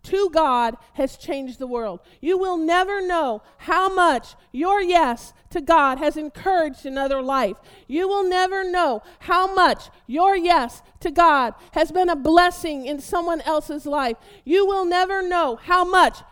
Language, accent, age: English, American, 40-59